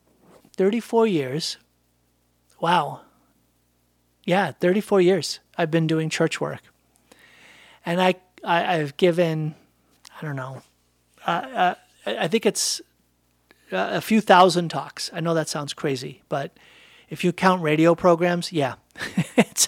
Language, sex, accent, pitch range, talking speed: English, male, American, 120-180 Hz, 125 wpm